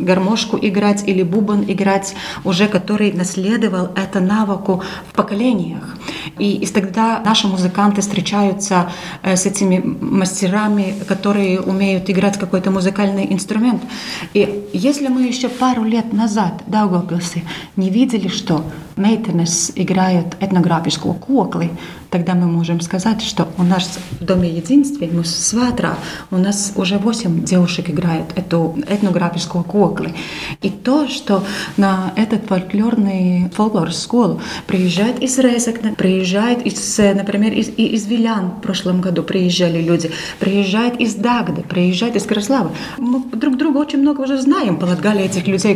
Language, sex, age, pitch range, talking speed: Russian, female, 30-49, 180-220 Hz, 135 wpm